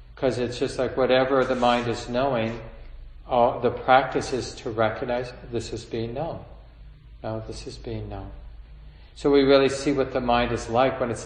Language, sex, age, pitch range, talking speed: English, male, 40-59, 110-130 Hz, 180 wpm